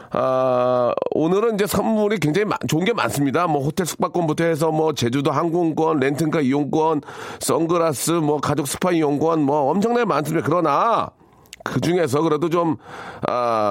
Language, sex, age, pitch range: Korean, male, 40-59, 135-175 Hz